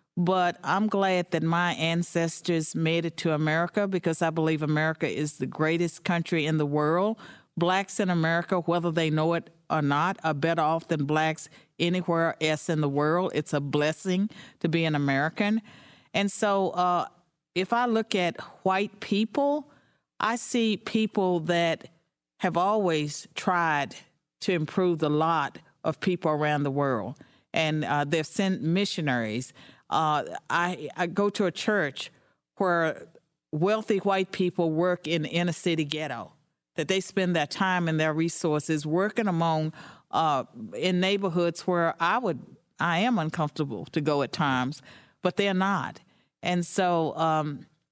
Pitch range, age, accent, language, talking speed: 155-190 Hz, 50-69, American, English, 155 wpm